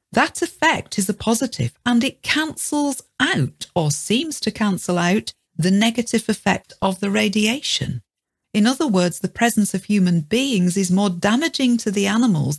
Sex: female